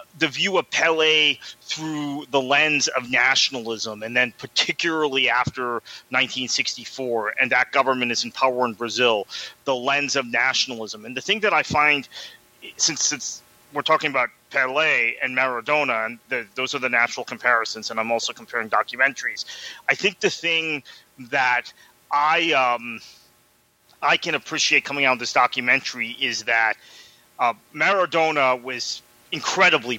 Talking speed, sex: 140 wpm, male